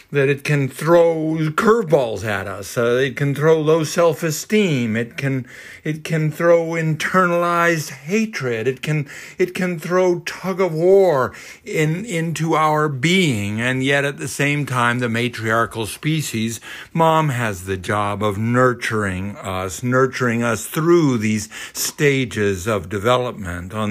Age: 50-69